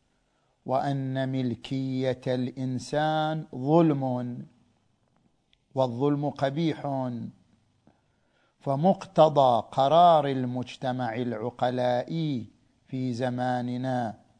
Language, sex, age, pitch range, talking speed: Arabic, male, 50-69, 125-165 Hz, 50 wpm